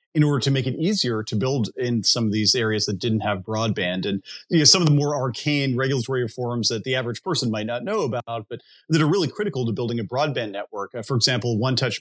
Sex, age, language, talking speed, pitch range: male, 30-49, English, 245 wpm, 110-140 Hz